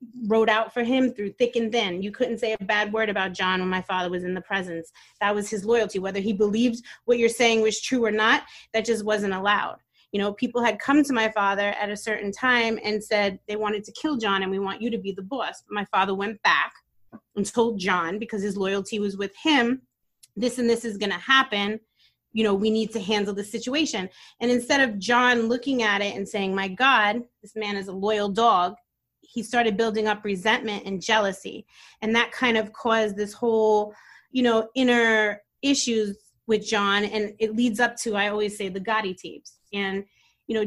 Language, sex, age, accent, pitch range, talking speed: English, female, 30-49, American, 200-230 Hz, 215 wpm